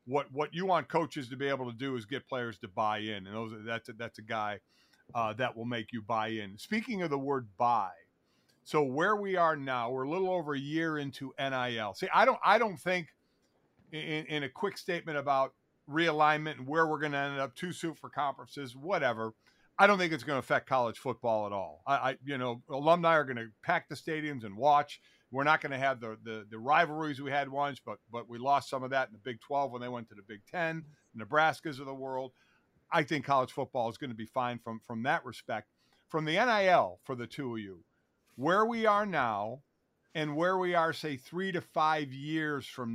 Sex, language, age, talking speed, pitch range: male, English, 50-69, 235 wpm, 120-155 Hz